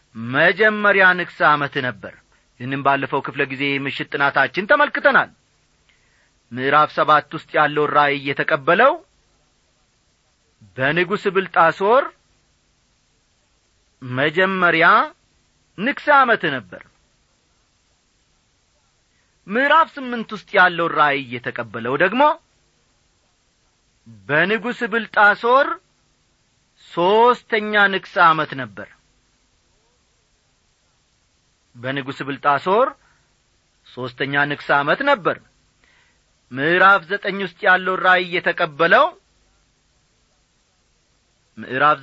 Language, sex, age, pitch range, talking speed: Amharic, male, 40-59, 140-200 Hz, 60 wpm